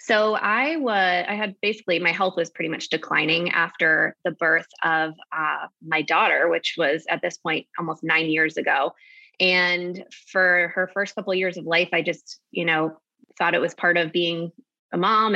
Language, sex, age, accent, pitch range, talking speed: English, female, 20-39, American, 165-190 Hz, 190 wpm